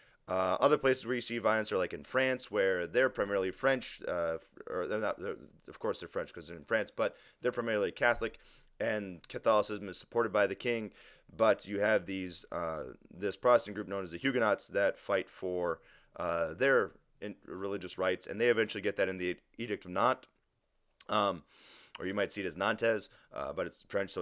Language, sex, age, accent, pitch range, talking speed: English, male, 30-49, American, 95-115 Hz, 205 wpm